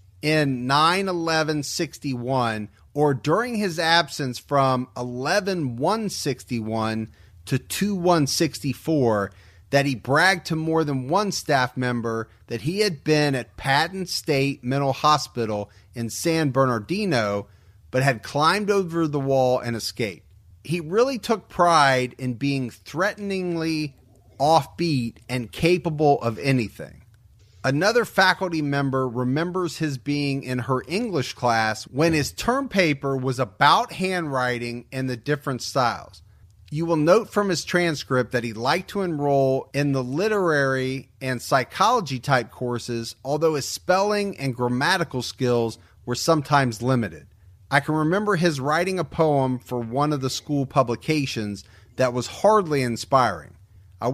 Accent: American